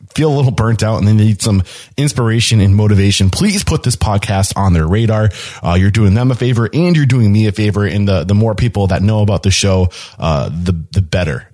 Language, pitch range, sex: English, 95-120 Hz, male